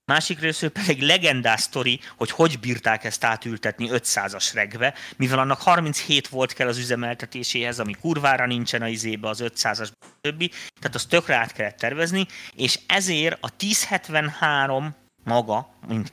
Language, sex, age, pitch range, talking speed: Hungarian, male, 30-49, 110-140 Hz, 150 wpm